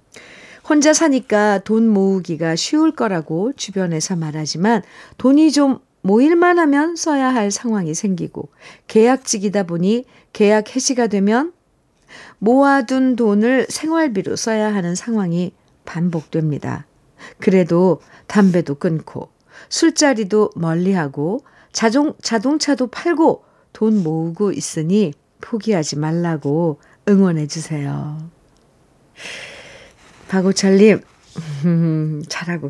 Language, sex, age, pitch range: Korean, female, 50-69, 165-230 Hz